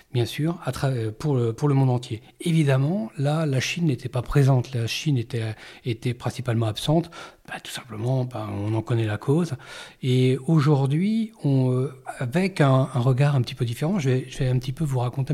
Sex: male